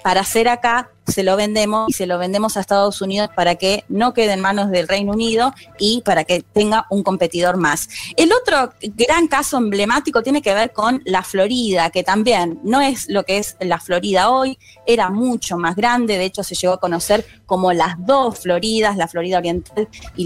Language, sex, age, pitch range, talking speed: Spanish, female, 20-39, 190-270 Hz, 200 wpm